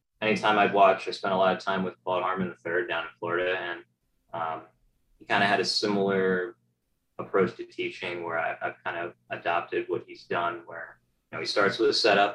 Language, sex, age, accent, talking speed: English, male, 20-39, American, 220 wpm